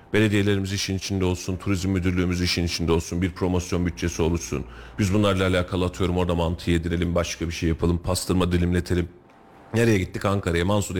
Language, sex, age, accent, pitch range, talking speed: Turkish, male, 40-59, native, 85-105 Hz, 165 wpm